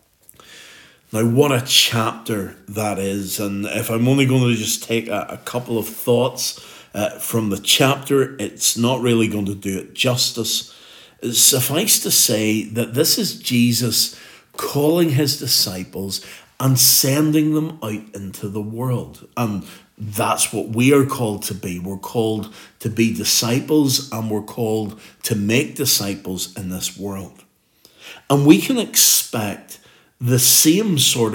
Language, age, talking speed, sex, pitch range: English, 50-69, 145 wpm, male, 105-130 Hz